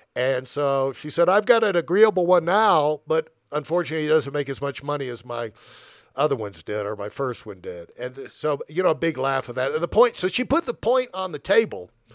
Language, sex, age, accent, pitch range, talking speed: English, male, 50-69, American, 120-165 Hz, 230 wpm